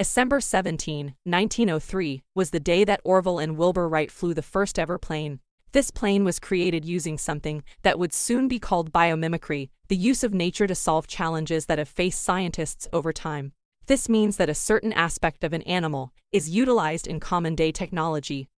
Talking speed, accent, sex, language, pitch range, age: 175 wpm, American, female, English, 155-195 Hz, 20-39